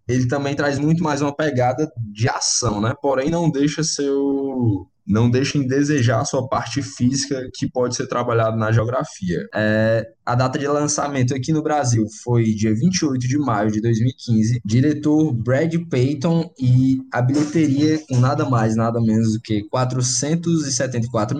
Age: 10-29